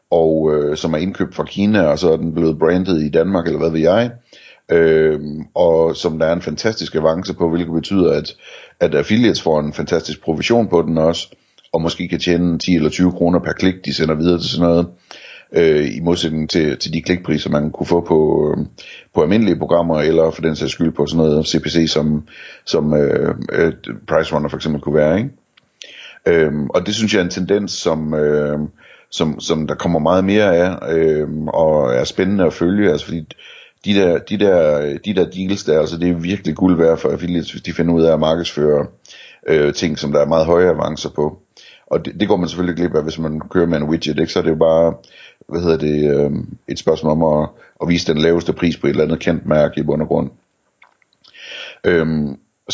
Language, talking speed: Danish, 215 wpm